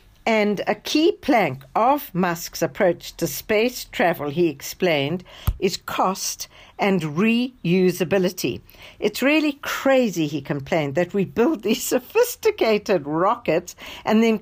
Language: English